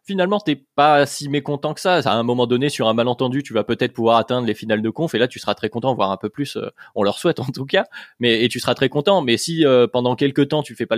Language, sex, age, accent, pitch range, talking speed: French, male, 20-39, French, 110-145 Hz, 300 wpm